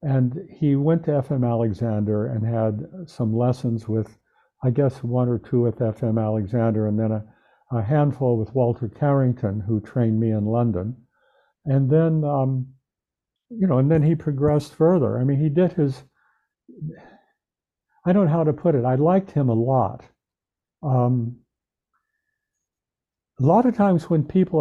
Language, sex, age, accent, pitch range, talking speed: English, male, 60-79, American, 115-150 Hz, 160 wpm